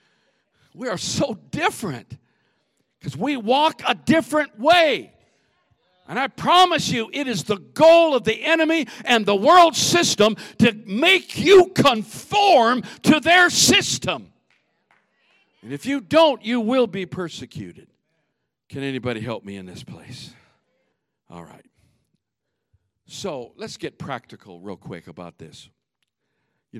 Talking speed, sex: 130 wpm, male